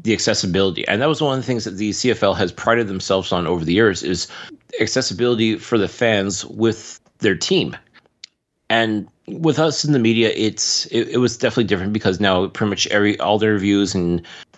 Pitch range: 95-120 Hz